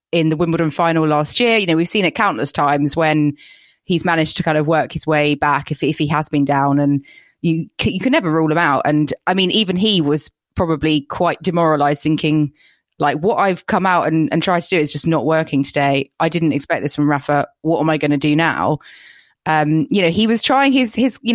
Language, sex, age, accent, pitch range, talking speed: English, female, 20-39, British, 155-190 Hz, 235 wpm